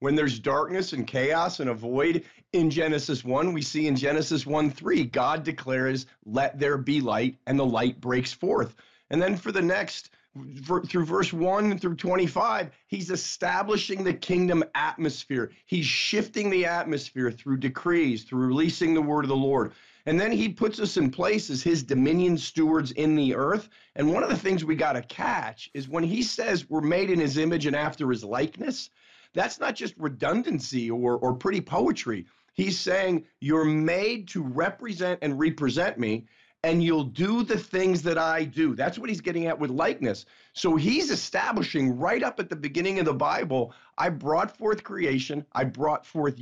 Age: 40-59